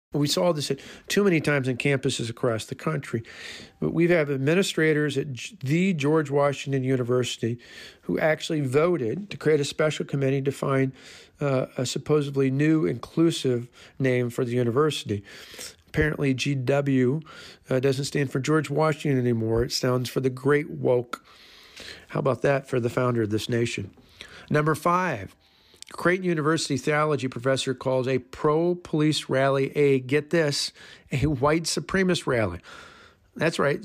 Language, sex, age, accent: English, male, 50-69, American